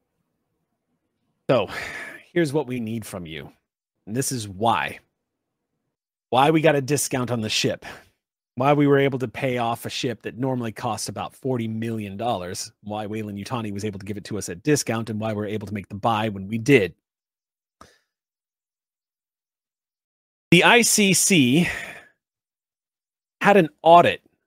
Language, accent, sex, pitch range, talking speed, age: English, American, male, 110-145 Hz, 155 wpm, 30-49